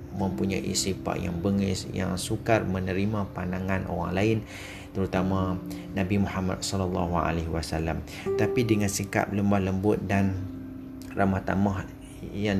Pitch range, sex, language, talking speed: 95-105 Hz, male, Malay, 115 wpm